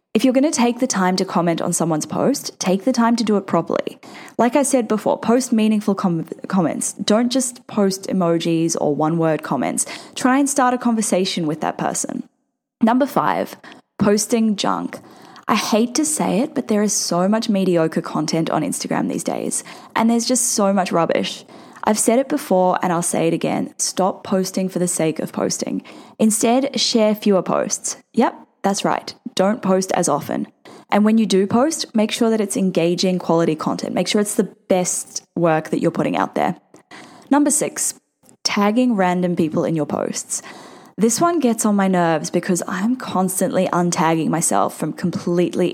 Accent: Australian